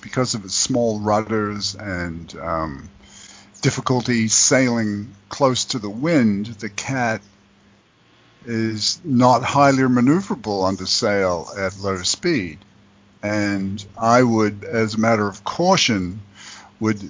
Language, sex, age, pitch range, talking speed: English, male, 50-69, 100-115 Hz, 115 wpm